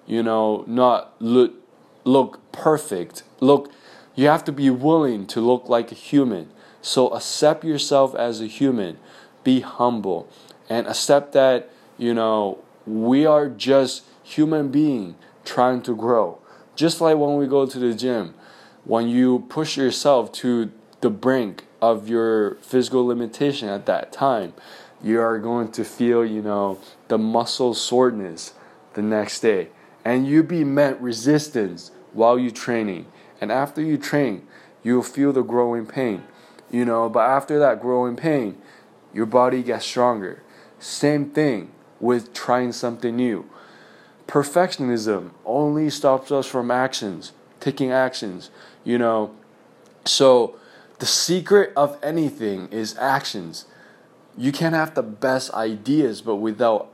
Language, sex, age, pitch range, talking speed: English, male, 20-39, 115-140 Hz, 140 wpm